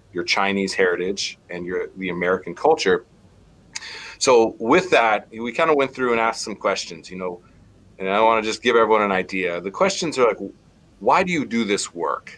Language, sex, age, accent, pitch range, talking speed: English, male, 30-49, American, 100-145 Hz, 195 wpm